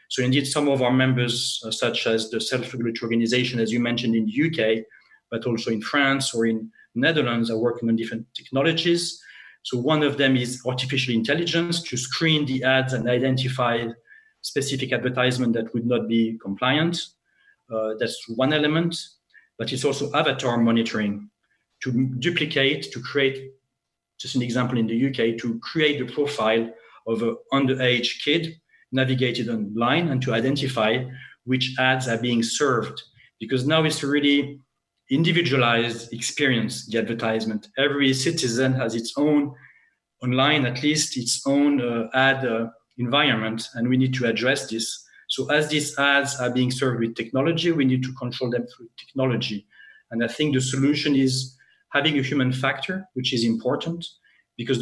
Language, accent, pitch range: English, French, 115-140 Hz